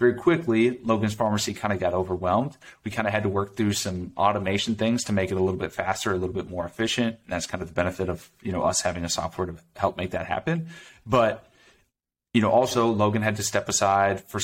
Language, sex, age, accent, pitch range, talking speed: English, male, 30-49, American, 95-110 Hz, 240 wpm